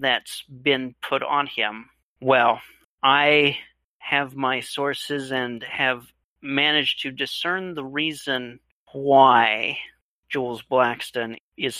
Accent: American